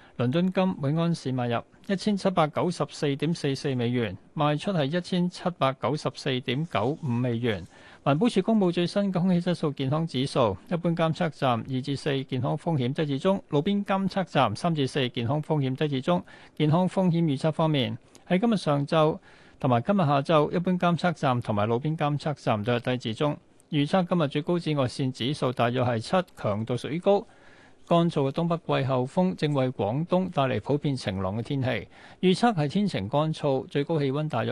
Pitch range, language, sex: 130-175 Hz, Chinese, male